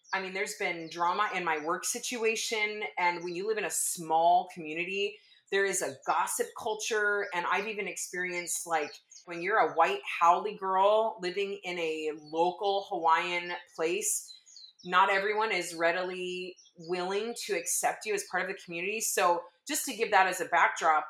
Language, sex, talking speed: English, female, 170 wpm